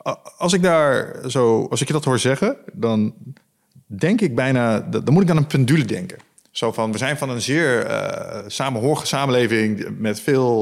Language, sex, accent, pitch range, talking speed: Dutch, male, Dutch, 115-150 Hz, 185 wpm